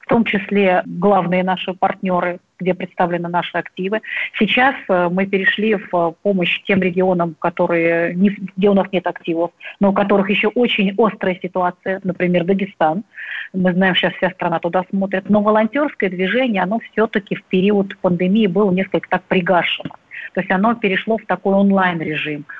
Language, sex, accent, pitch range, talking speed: Russian, female, native, 180-215 Hz, 150 wpm